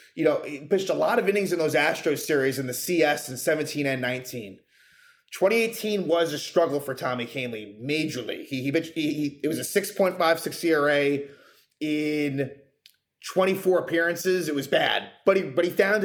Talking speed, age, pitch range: 180 wpm, 30-49, 145-185 Hz